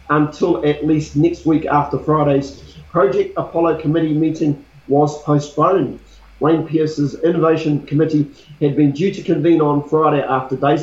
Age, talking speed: 40-59, 145 wpm